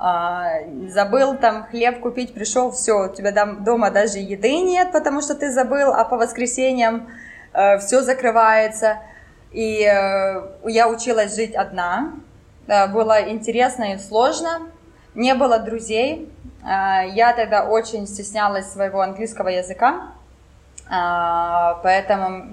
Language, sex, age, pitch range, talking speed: Ukrainian, female, 20-39, 195-250 Hz, 110 wpm